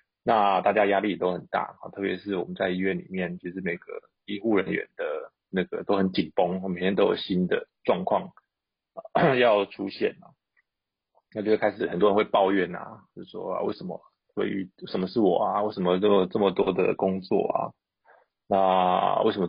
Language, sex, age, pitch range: Chinese, male, 20-39, 90-110 Hz